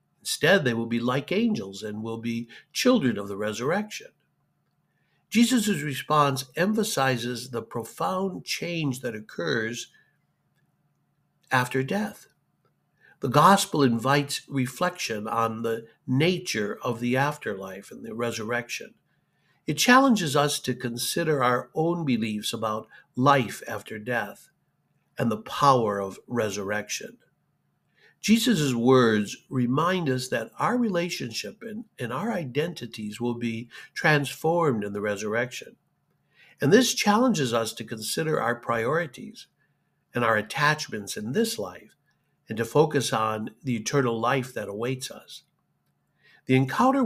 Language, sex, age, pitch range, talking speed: English, male, 60-79, 115-155 Hz, 120 wpm